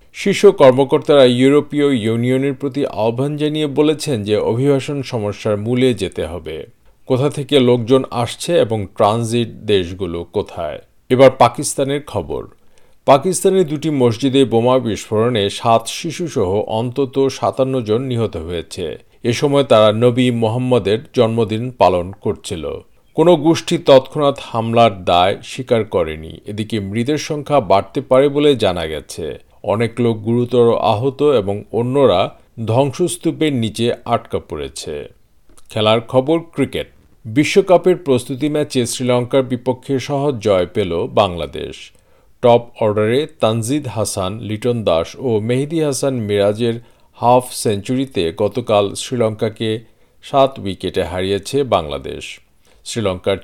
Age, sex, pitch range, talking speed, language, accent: 50-69, male, 110-140 Hz, 115 wpm, Bengali, native